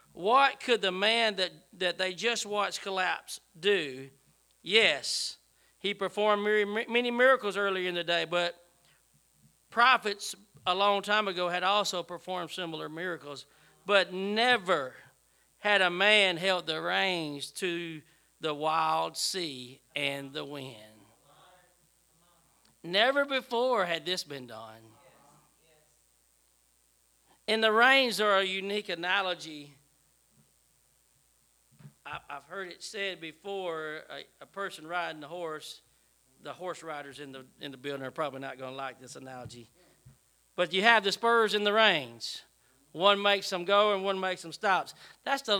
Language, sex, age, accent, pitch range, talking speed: English, male, 40-59, American, 160-215 Hz, 135 wpm